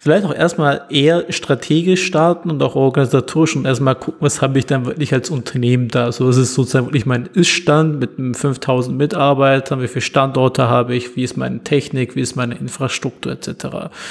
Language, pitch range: German, 125-155 Hz